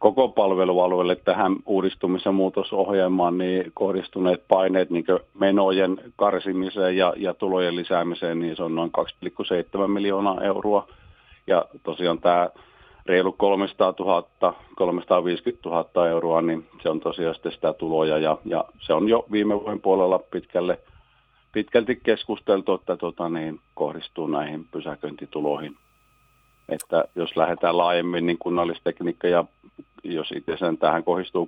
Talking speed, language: 125 wpm, Finnish